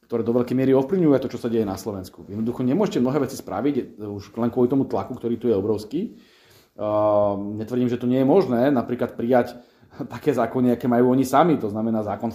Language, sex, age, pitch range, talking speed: Slovak, male, 30-49, 110-125 Hz, 210 wpm